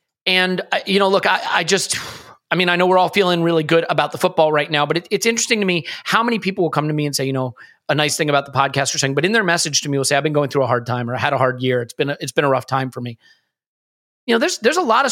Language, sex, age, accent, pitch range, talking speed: English, male, 30-49, American, 145-185 Hz, 325 wpm